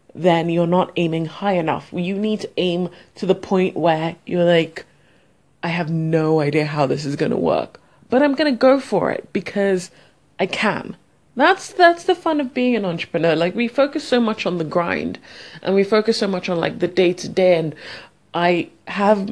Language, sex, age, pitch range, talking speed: English, female, 20-39, 165-215 Hz, 205 wpm